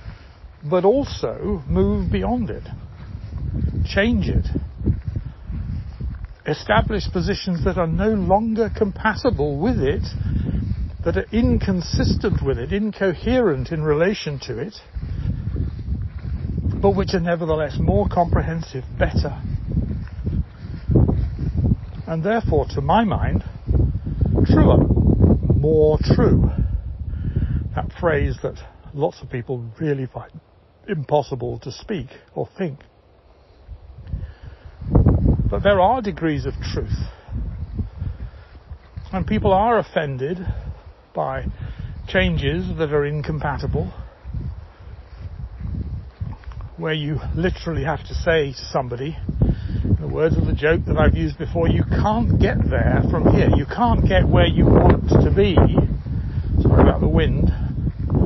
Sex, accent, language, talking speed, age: male, British, English, 105 wpm, 60-79